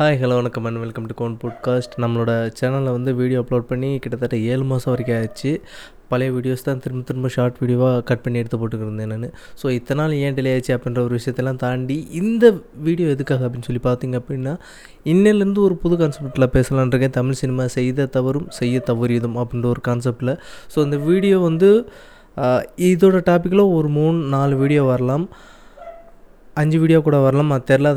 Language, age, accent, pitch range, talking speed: Tamil, 20-39, native, 125-165 Hz, 165 wpm